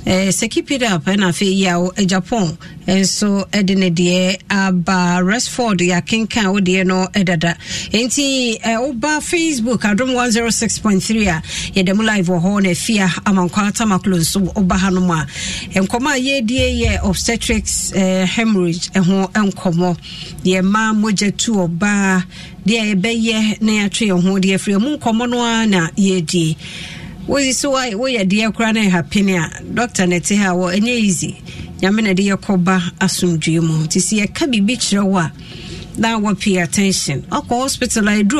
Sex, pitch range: female, 185-225 Hz